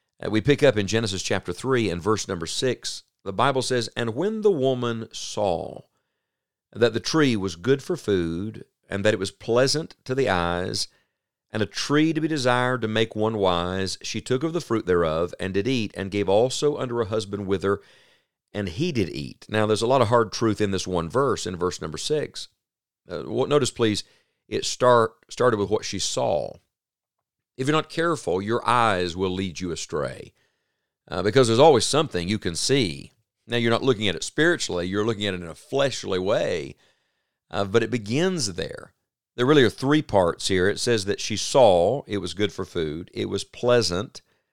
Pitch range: 100-125 Hz